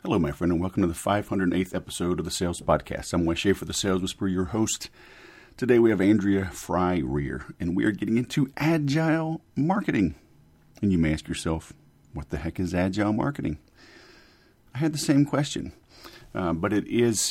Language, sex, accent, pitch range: English, male, American, 80-100 Hz